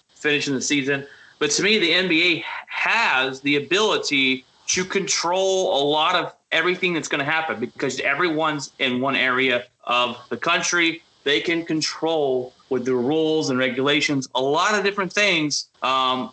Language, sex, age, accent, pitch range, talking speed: English, male, 30-49, American, 130-155 Hz, 160 wpm